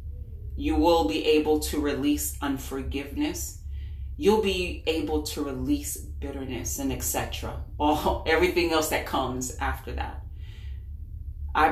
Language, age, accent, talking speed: English, 30-49, American, 125 wpm